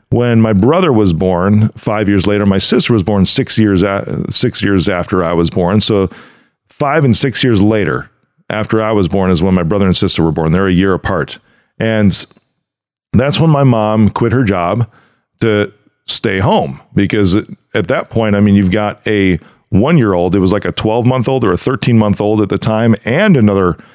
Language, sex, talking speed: English, male, 195 wpm